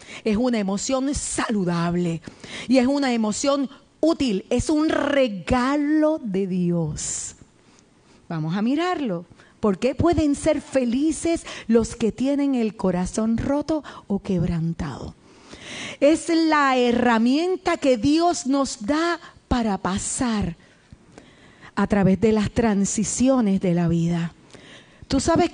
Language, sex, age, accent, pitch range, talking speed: Spanish, female, 40-59, American, 210-310 Hz, 115 wpm